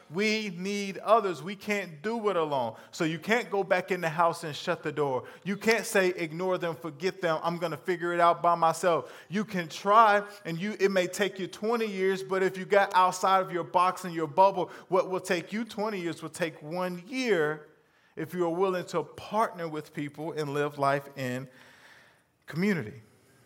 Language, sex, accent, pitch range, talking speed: English, male, American, 135-180 Hz, 200 wpm